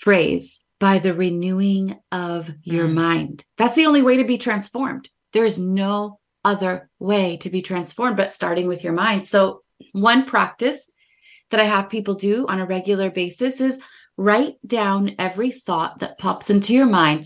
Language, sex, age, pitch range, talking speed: English, female, 30-49, 185-245 Hz, 170 wpm